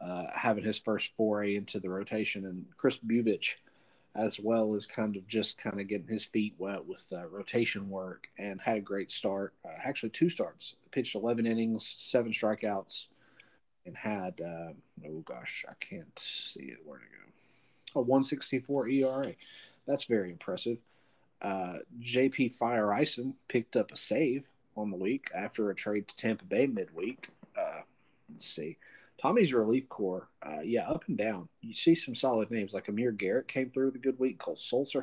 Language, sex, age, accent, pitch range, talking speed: English, male, 40-59, American, 105-130 Hz, 180 wpm